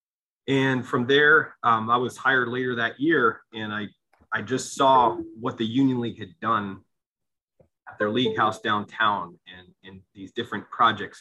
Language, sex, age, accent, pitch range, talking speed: English, male, 30-49, American, 100-115 Hz, 165 wpm